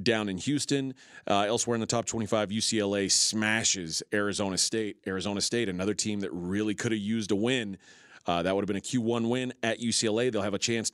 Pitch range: 105-145 Hz